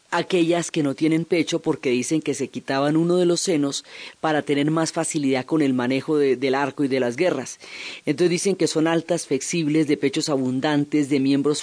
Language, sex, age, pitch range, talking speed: Spanish, female, 30-49, 140-165 Hz, 195 wpm